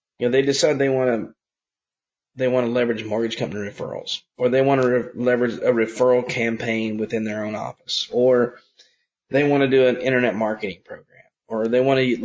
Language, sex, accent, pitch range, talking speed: English, male, American, 115-135 Hz, 195 wpm